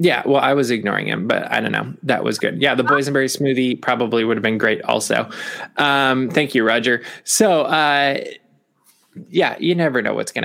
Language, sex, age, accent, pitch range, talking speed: English, male, 20-39, American, 120-150 Hz, 200 wpm